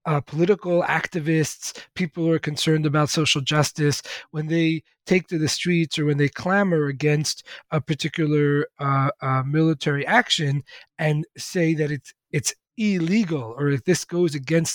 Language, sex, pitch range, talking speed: English, male, 150-185 Hz, 155 wpm